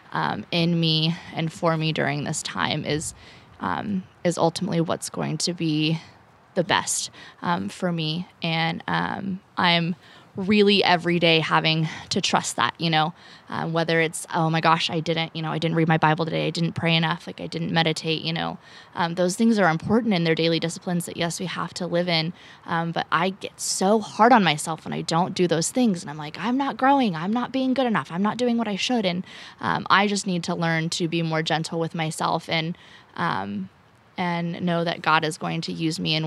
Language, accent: English, American